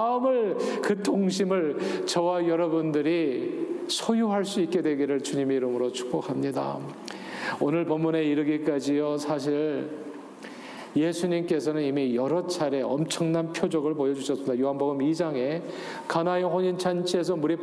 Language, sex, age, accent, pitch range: Korean, male, 40-59, native, 155-195 Hz